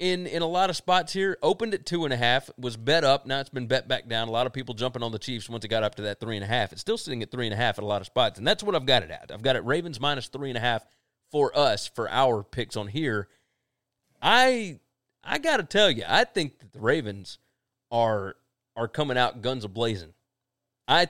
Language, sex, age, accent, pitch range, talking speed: English, male, 30-49, American, 115-140 Hz, 235 wpm